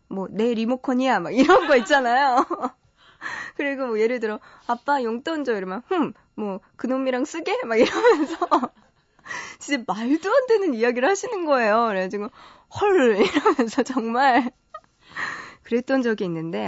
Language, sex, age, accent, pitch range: Korean, female, 20-39, native, 185-275 Hz